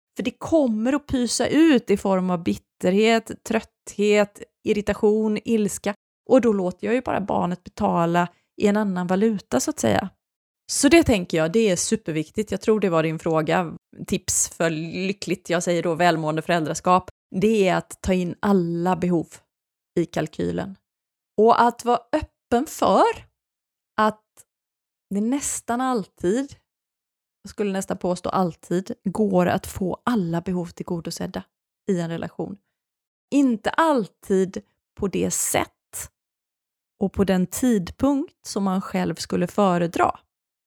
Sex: female